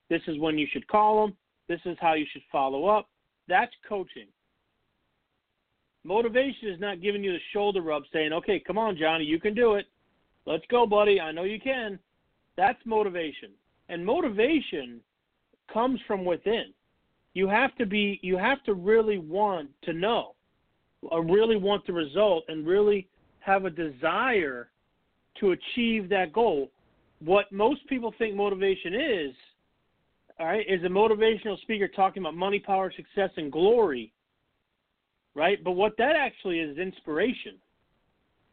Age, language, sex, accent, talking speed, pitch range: 40-59, English, male, American, 155 wpm, 165-215 Hz